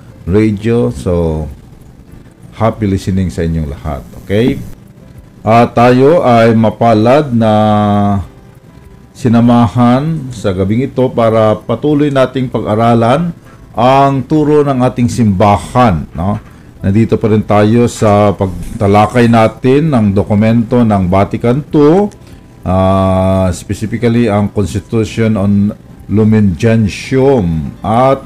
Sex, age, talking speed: male, 50-69, 100 wpm